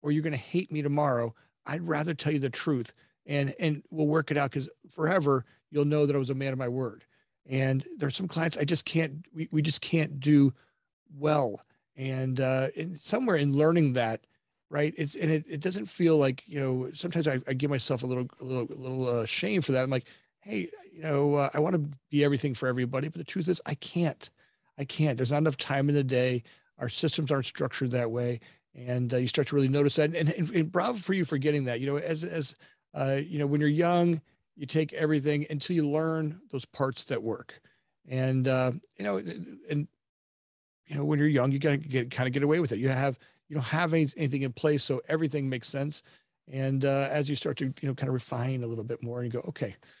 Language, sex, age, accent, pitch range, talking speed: English, male, 40-59, American, 130-155 Hz, 235 wpm